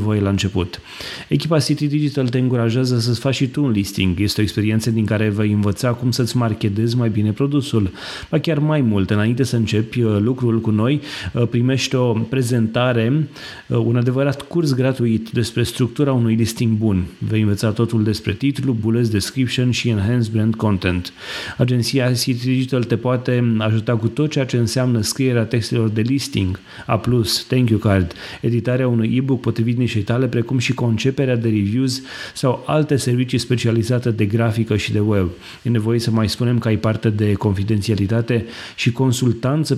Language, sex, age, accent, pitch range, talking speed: Romanian, male, 30-49, native, 110-125 Hz, 165 wpm